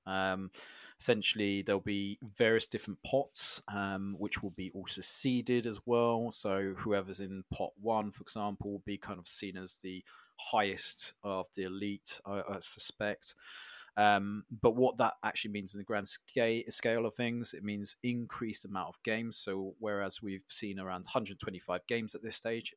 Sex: male